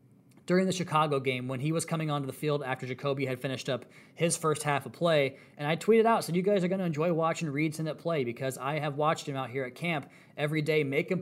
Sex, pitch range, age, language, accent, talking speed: male, 130-155 Hz, 20-39, English, American, 265 wpm